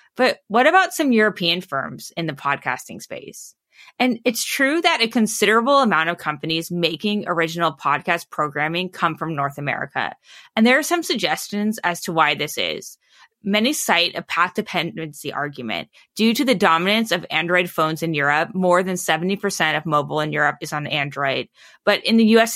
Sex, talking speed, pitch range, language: female, 175 wpm, 150-210 Hz, English